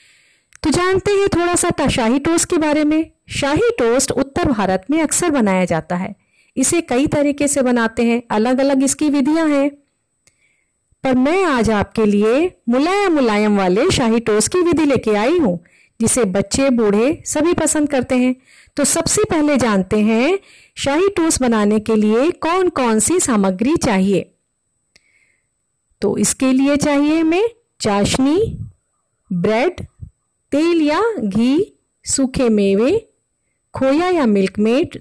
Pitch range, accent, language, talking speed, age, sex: 215-315 Hz, native, Hindi, 140 wpm, 40-59, female